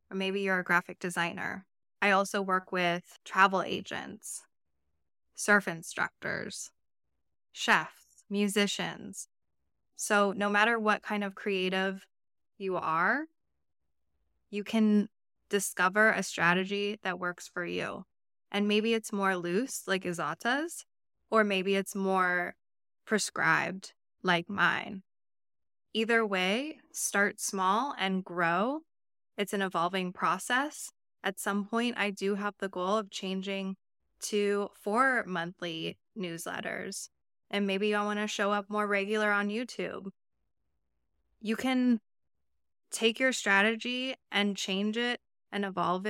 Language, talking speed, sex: English, 120 wpm, female